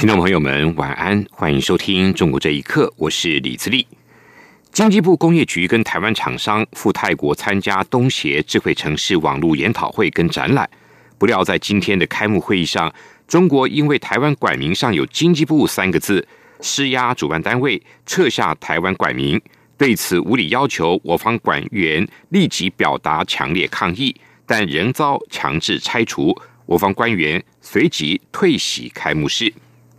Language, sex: German, male